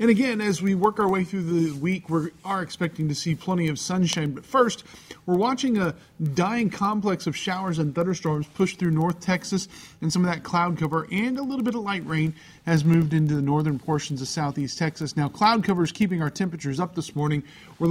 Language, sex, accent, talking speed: English, male, American, 220 wpm